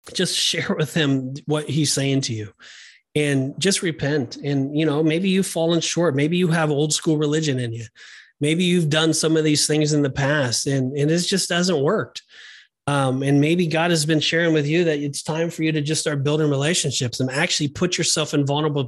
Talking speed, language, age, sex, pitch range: 220 wpm, English, 30-49, male, 135-165 Hz